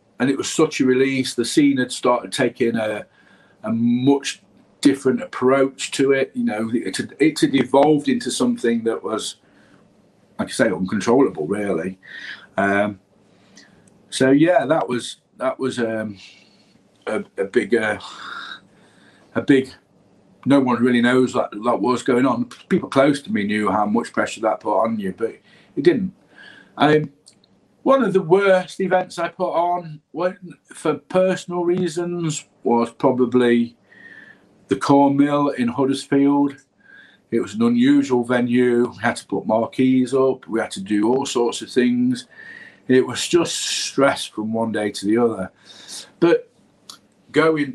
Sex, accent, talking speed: male, British, 155 wpm